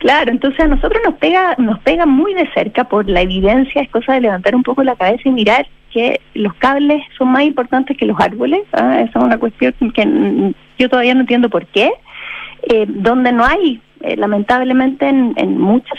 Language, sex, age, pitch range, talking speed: Spanish, female, 30-49, 225-295 Hz, 205 wpm